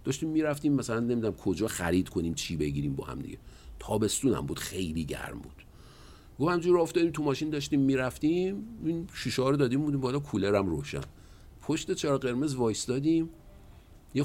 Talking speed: 160 wpm